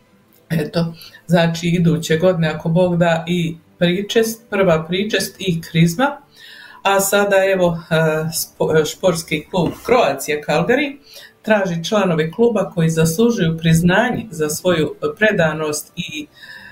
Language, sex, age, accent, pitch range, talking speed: Croatian, female, 50-69, native, 160-195 Hz, 110 wpm